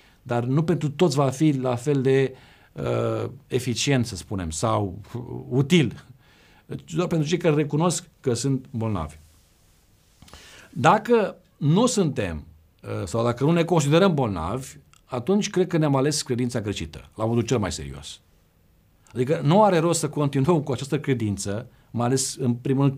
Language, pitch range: Romanian, 105-160 Hz